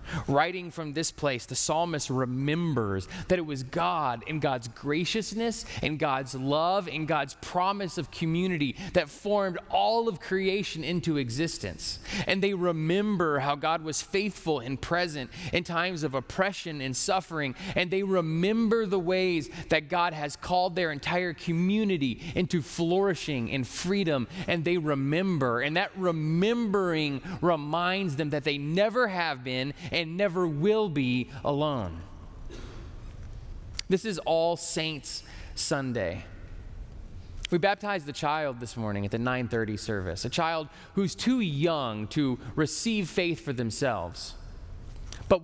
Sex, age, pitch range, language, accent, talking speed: male, 30-49, 130-185 Hz, English, American, 135 wpm